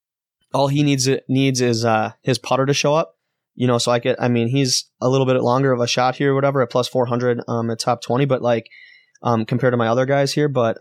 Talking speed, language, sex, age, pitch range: 265 wpm, English, male, 20-39, 115-140 Hz